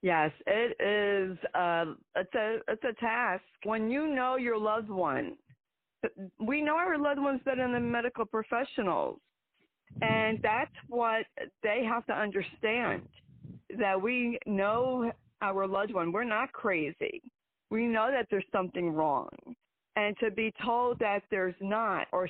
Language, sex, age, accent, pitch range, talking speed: English, female, 40-59, American, 185-235 Hz, 145 wpm